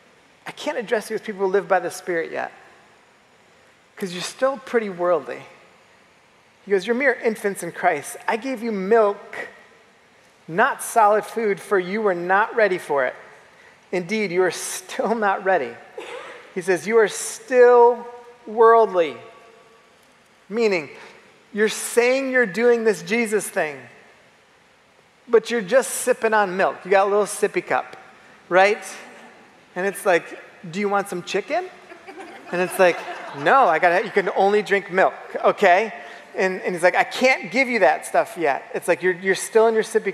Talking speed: 165 wpm